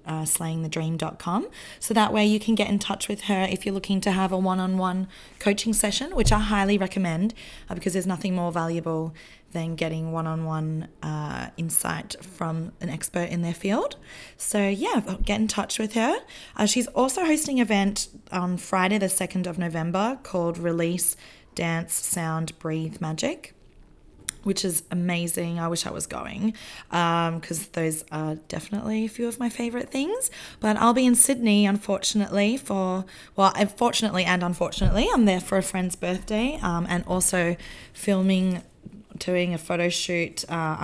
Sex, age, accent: female, 20-39, Australian